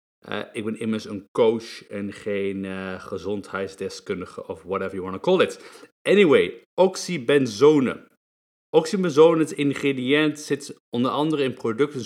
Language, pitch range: Dutch, 105-140 Hz